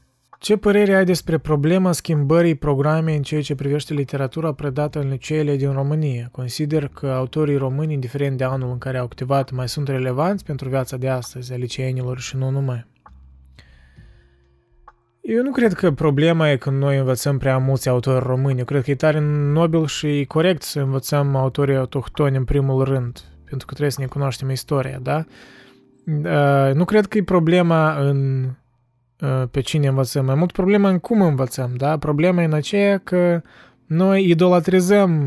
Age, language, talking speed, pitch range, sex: 20-39, Romanian, 170 wpm, 135-170 Hz, male